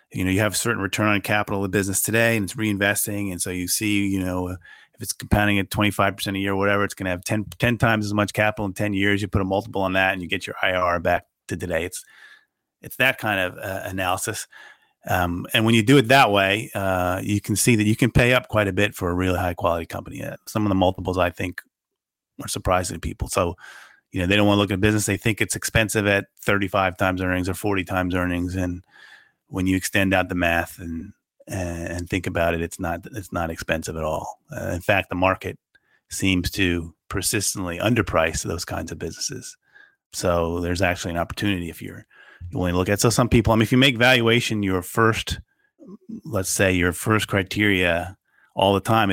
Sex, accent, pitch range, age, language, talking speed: male, American, 90-105 Hz, 30-49, English, 225 wpm